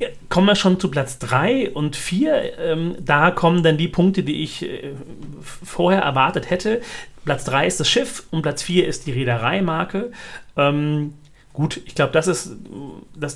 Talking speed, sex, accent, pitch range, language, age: 155 wpm, male, German, 130-160 Hz, German, 40-59